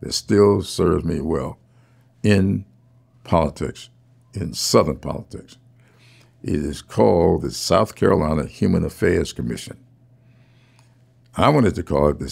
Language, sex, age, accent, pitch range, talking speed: English, male, 60-79, American, 85-125 Hz, 120 wpm